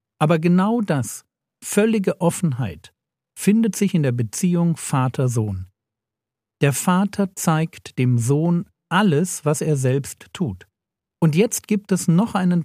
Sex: male